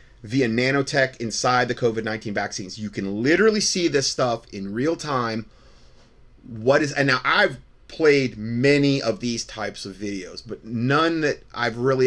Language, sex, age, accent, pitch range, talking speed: English, male, 30-49, American, 105-130 Hz, 160 wpm